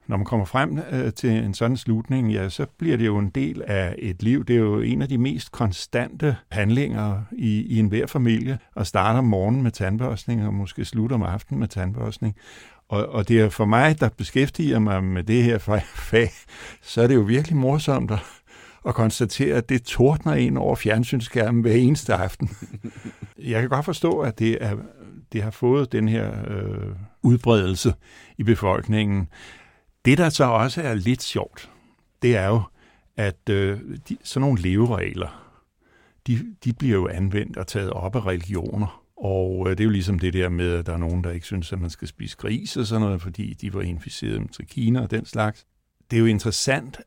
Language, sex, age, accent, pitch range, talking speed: Danish, male, 60-79, native, 100-120 Hz, 195 wpm